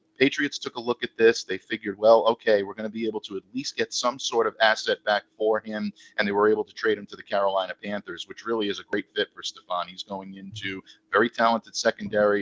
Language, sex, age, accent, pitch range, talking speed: English, male, 50-69, American, 105-125 Hz, 250 wpm